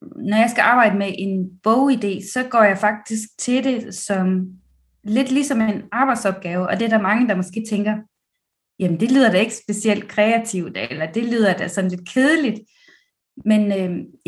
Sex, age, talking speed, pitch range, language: female, 20-39, 175 wpm, 195-245 Hz, Danish